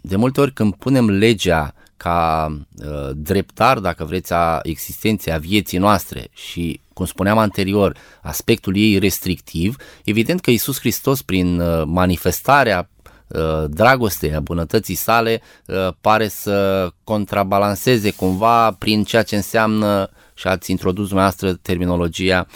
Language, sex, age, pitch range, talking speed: Romanian, male, 20-39, 90-110 Hz, 130 wpm